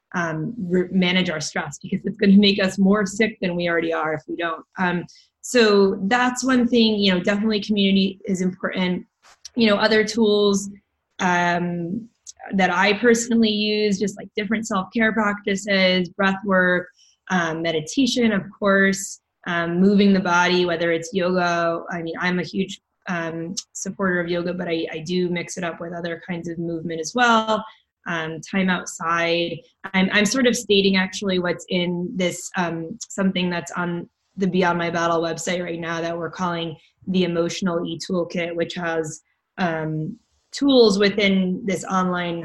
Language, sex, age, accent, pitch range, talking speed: English, female, 20-39, American, 170-200 Hz, 165 wpm